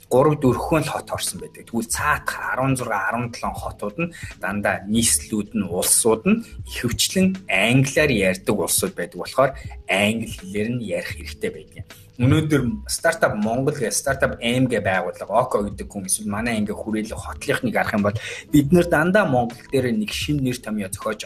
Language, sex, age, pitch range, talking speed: English, male, 20-39, 105-155 Hz, 155 wpm